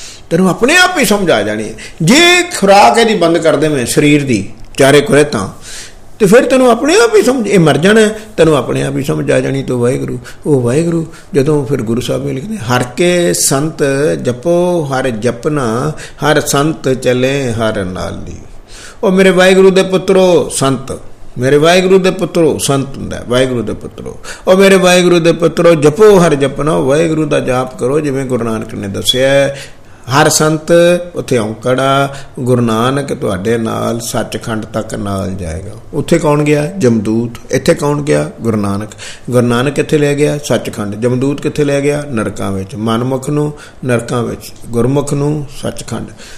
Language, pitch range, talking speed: Punjabi, 115-175 Hz, 165 wpm